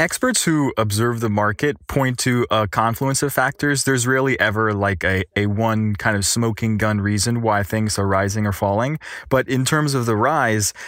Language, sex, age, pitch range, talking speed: English, male, 20-39, 105-130 Hz, 195 wpm